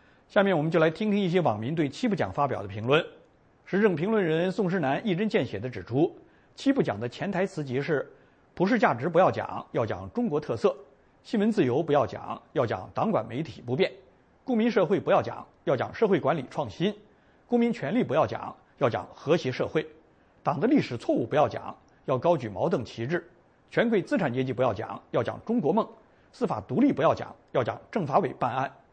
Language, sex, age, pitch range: English, male, 50-69, 145-220 Hz